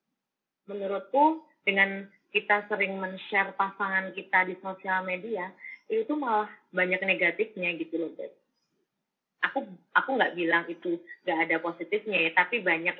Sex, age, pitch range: female, 20-39, 180-245 Hz